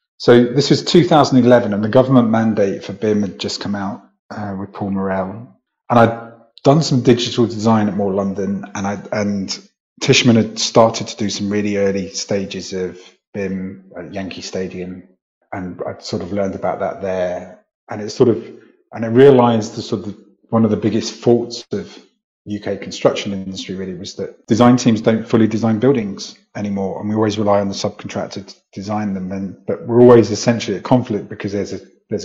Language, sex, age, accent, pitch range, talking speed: English, male, 30-49, British, 100-120 Hz, 190 wpm